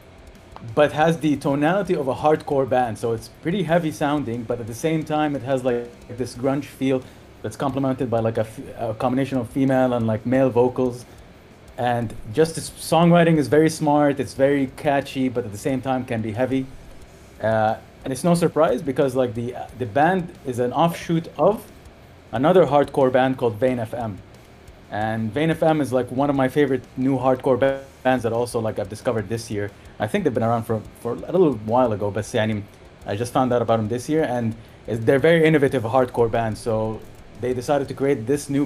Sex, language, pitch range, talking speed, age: male, Arabic, 110-140 Hz, 205 wpm, 30-49